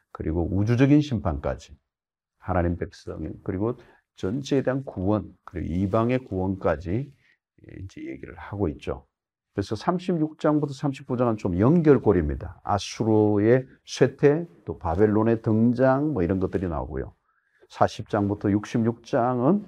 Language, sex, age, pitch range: Korean, male, 50-69, 85-130 Hz